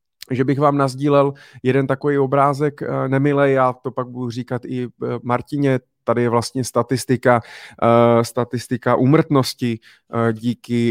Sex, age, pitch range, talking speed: male, 30-49, 120-135 Hz, 120 wpm